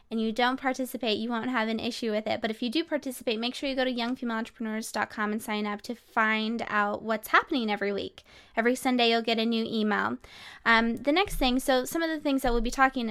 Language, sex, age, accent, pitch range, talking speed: English, female, 20-39, American, 220-255 Hz, 240 wpm